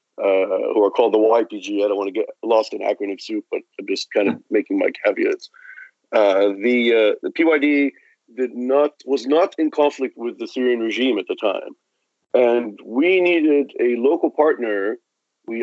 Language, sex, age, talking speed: English, male, 40-59, 185 wpm